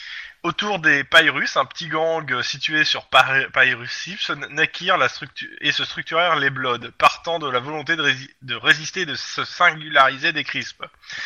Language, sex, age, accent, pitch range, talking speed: French, male, 20-39, French, 135-180 Hz, 155 wpm